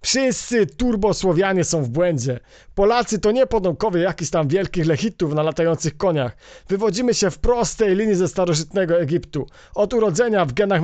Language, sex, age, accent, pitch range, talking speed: Polish, male, 40-59, native, 165-215 Hz, 155 wpm